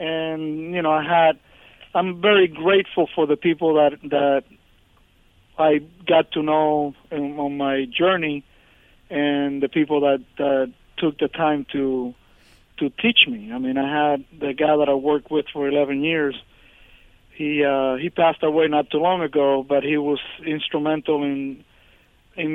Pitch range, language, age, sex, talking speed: 140-160 Hz, English, 50-69, male, 160 wpm